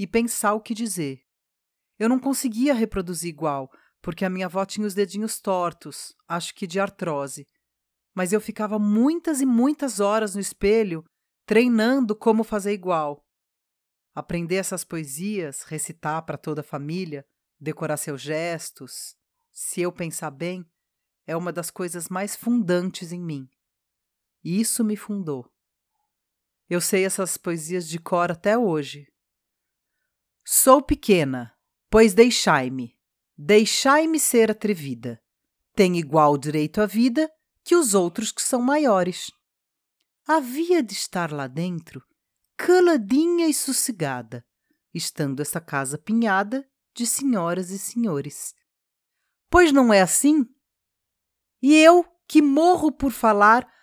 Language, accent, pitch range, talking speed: Portuguese, Brazilian, 160-245 Hz, 125 wpm